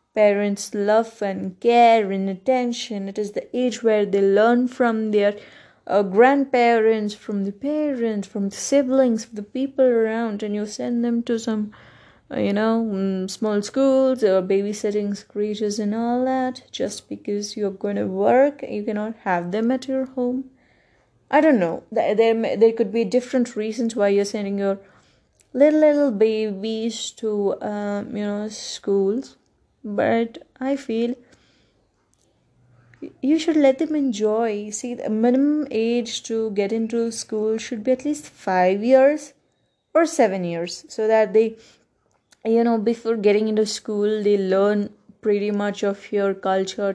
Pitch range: 205-240 Hz